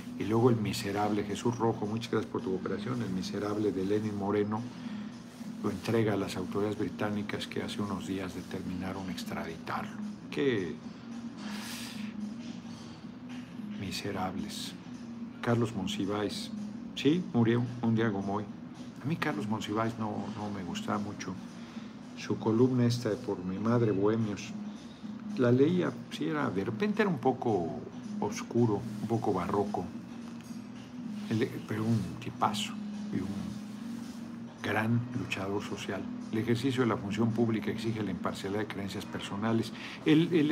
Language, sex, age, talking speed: Spanish, male, 50-69, 135 wpm